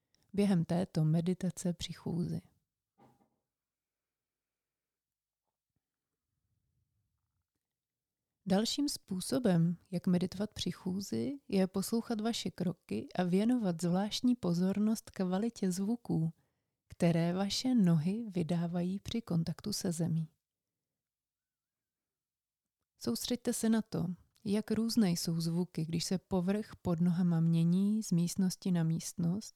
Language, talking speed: Czech, 95 wpm